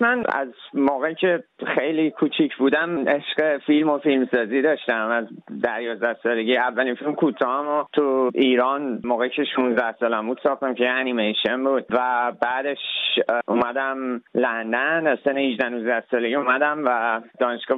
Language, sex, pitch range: Persian, male, 125-145 Hz